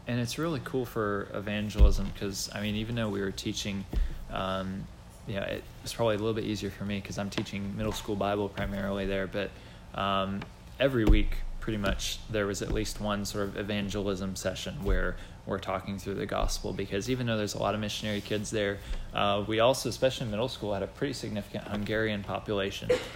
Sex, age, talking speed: male, 20-39, 200 wpm